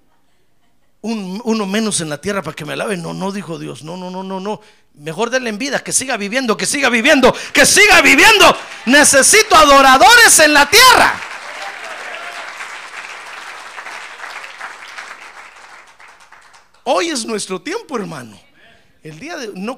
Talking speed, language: 135 wpm, Spanish